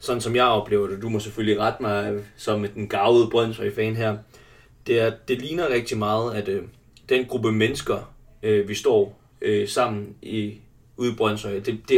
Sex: male